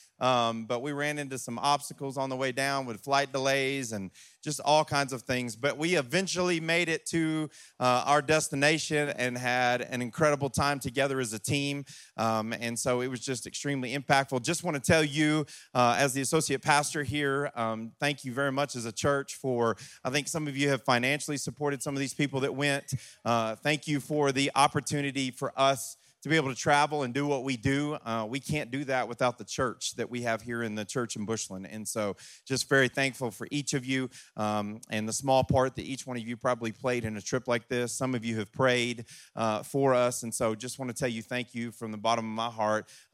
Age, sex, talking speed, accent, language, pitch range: 30-49, male, 230 wpm, American, English, 120-145 Hz